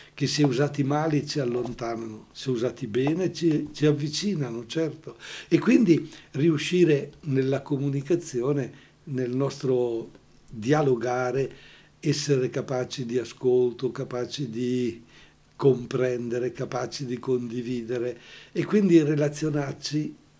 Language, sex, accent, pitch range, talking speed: Italian, male, native, 125-150 Hz, 100 wpm